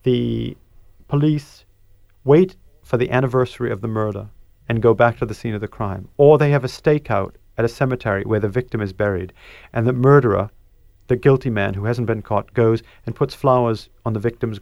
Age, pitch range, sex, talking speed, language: 40-59, 110-145 Hz, male, 195 wpm, English